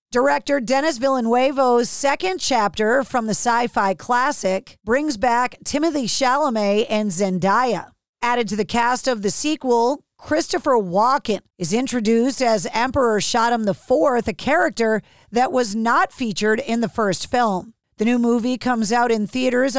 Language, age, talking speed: English, 40-59, 145 wpm